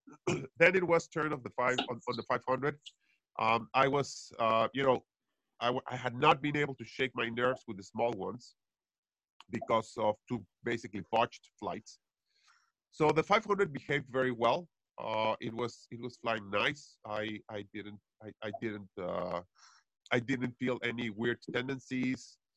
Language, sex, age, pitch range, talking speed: English, male, 40-59, 110-135 Hz, 170 wpm